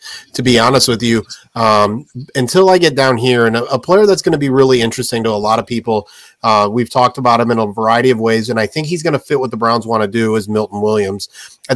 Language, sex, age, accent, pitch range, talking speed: English, male, 30-49, American, 110-130 Hz, 270 wpm